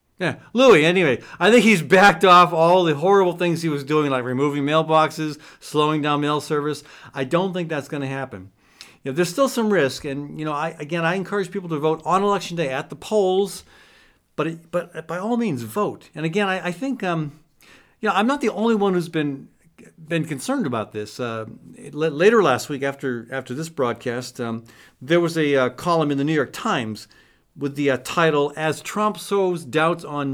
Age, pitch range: 50-69, 140-180 Hz